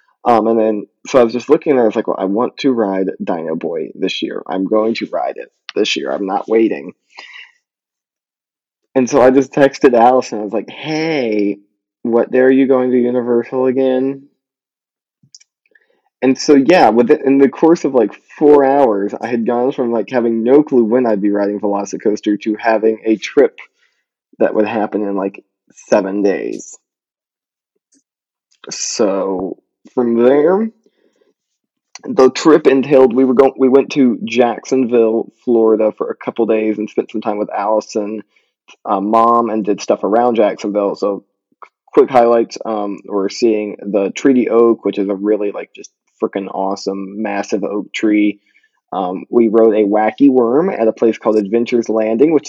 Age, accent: 20-39, American